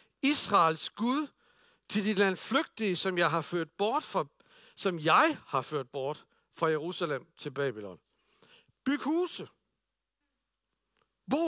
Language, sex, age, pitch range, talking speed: Danish, male, 60-79, 185-285 Hz, 125 wpm